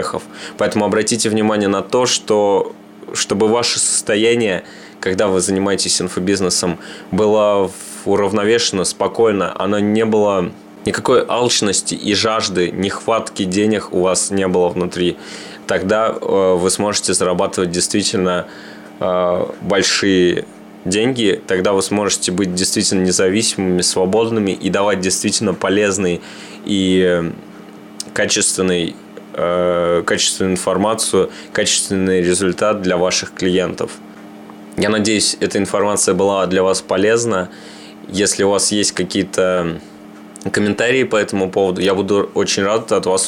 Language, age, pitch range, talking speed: Russian, 20-39, 95-105 Hz, 115 wpm